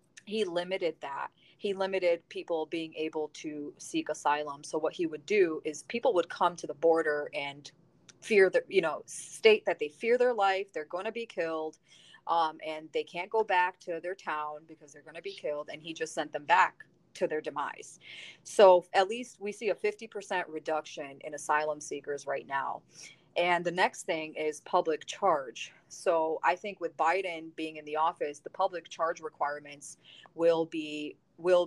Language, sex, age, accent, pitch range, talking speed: English, female, 30-49, American, 155-185 Hz, 190 wpm